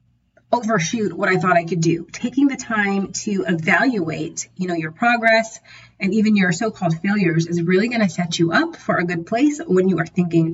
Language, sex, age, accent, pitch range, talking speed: English, female, 30-49, American, 170-215 Hz, 205 wpm